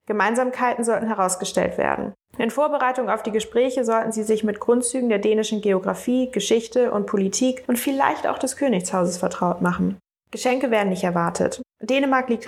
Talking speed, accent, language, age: 160 wpm, German, Danish, 20-39